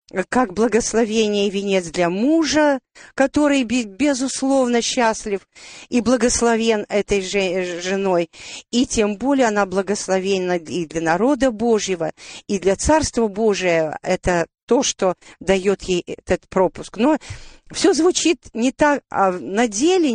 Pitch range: 195-285 Hz